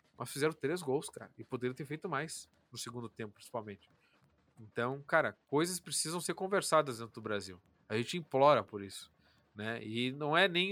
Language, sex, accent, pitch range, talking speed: Portuguese, male, Brazilian, 115-145 Hz, 185 wpm